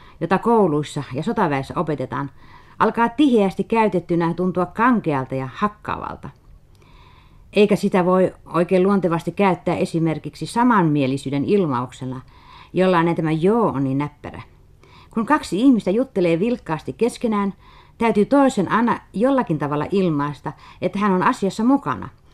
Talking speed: 120 wpm